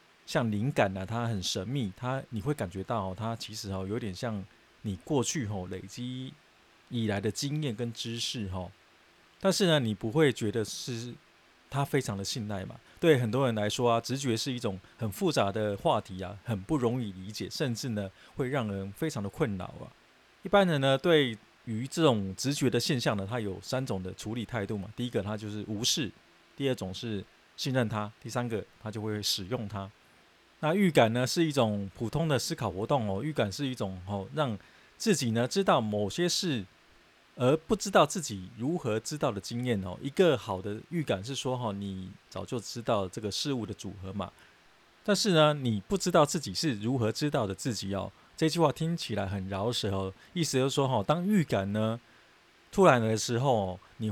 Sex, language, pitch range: male, Chinese, 100-140 Hz